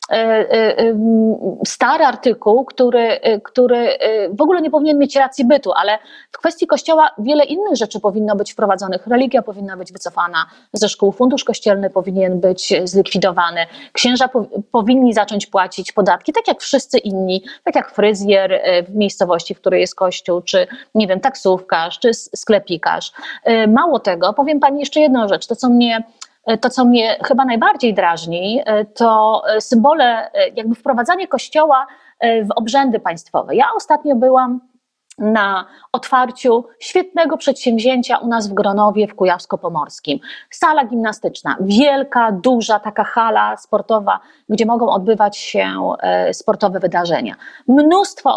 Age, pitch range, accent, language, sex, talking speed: 30-49, 200-265 Hz, native, Polish, female, 135 wpm